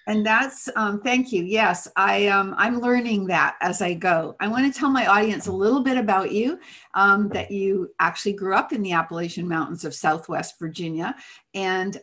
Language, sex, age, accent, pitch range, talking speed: English, female, 50-69, American, 175-210 Hz, 195 wpm